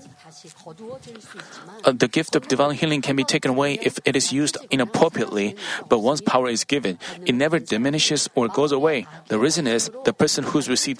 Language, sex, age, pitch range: Korean, male, 40-59, 130-160 Hz